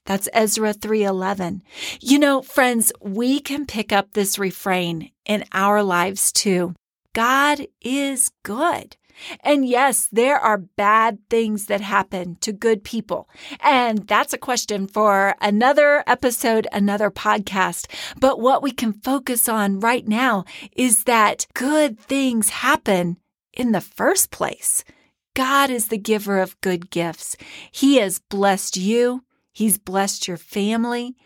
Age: 40-59